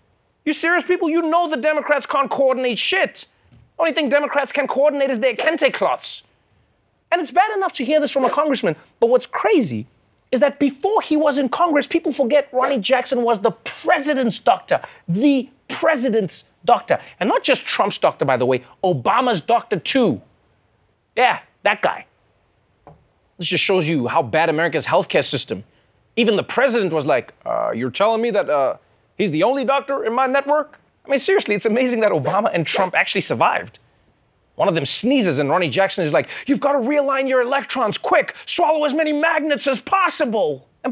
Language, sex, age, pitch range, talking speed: English, male, 30-49, 185-290 Hz, 185 wpm